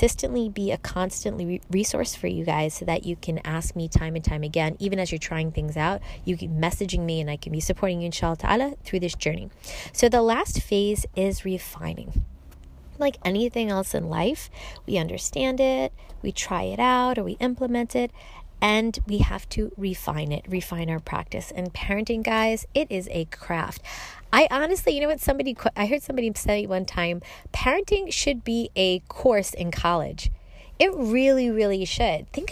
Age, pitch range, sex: 20-39, 175-255 Hz, female